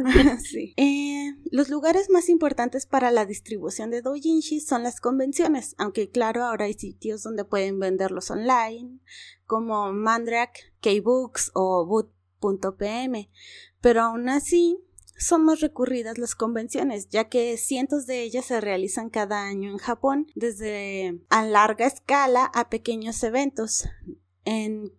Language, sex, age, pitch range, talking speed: Spanish, female, 20-39, 210-260 Hz, 130 wpm